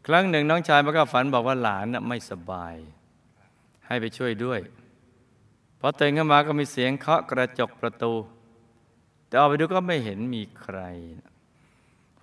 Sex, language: male, Thai